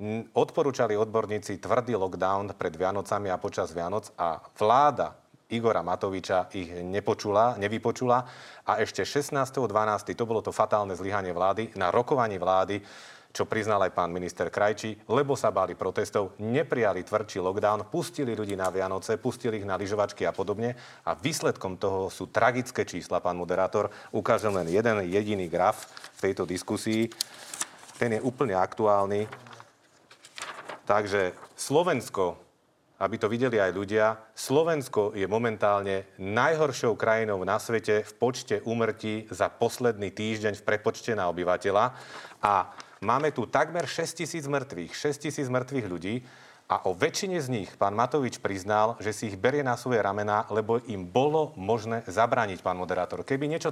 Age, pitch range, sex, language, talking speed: 30-49, 100-135 Hz, male, Slovak, 140 wpm